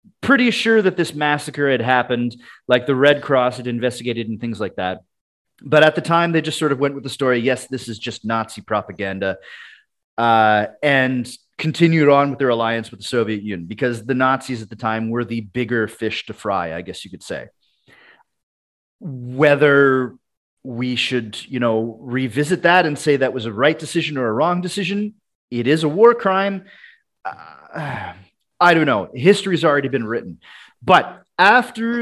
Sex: male